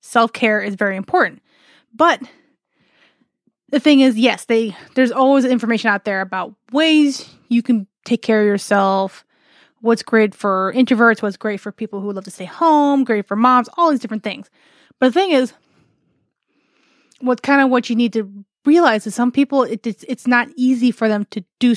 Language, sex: English, female